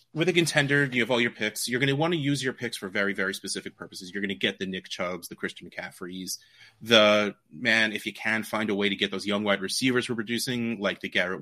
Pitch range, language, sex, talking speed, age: 105-135 Hz, English, male, 270 wpm, 30-49